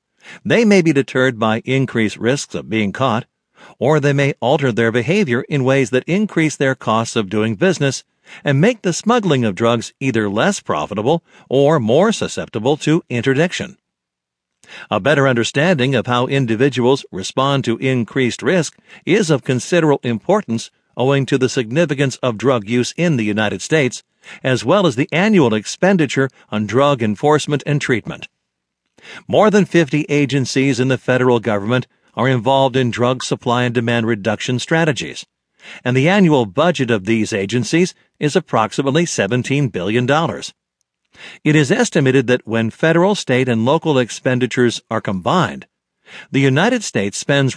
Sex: male